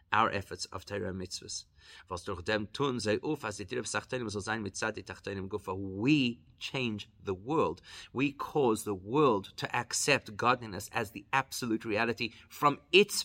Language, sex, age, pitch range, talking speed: English, male, 30-49, 95-125 Hz, 100 wpm